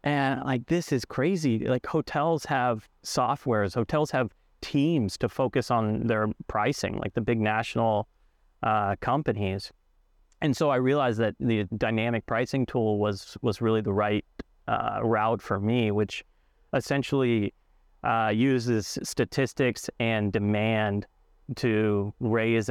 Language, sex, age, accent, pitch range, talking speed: English, male, 30-49, American, 105-120 Hz, 130 wpm